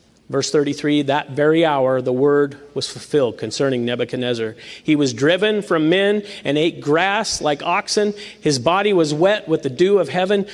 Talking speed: 170 wpm